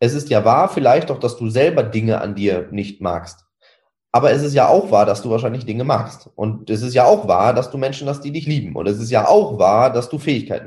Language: German